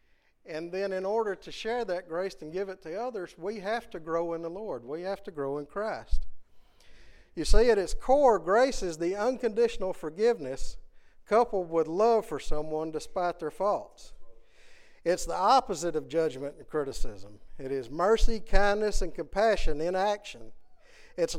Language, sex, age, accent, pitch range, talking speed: English, male, 50-69, American, 155-215 Hz, 170 wpm